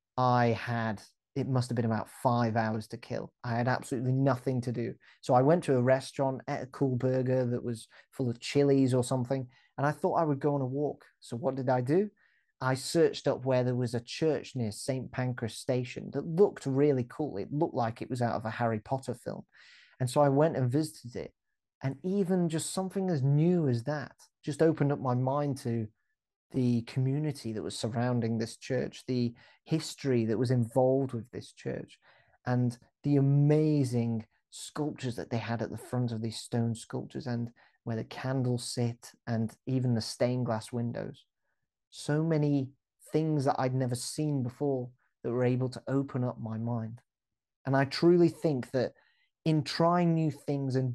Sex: male